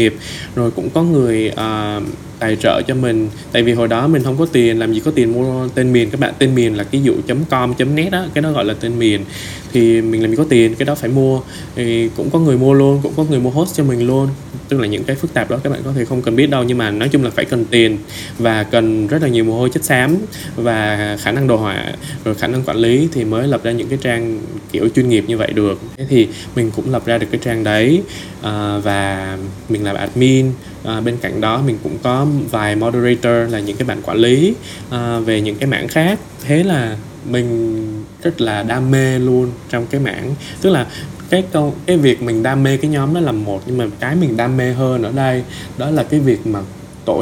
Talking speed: 245 wpm